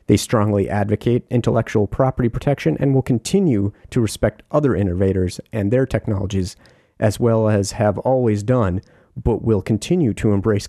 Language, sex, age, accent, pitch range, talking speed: English, male, 40-59, American, 105-130 Hz, 150 wpm